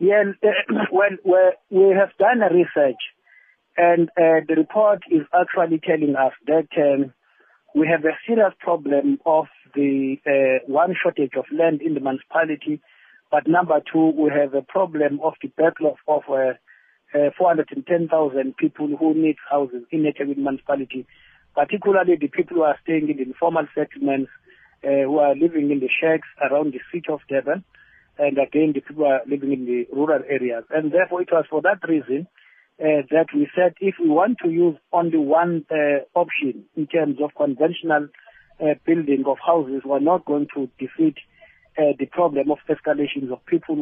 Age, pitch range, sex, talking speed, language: 50-69, 140-170 Hz, male, 175 wpm, English